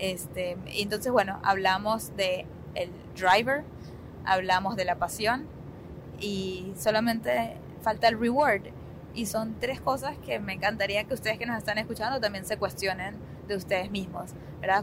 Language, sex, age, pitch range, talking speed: Spanish, female, 20-39, 185-220 Hz, 145 wpm